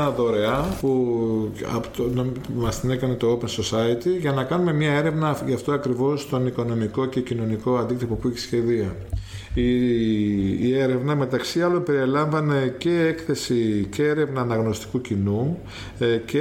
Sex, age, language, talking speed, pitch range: male, 50-69, Greek, 145 wpm, 120-145 Hz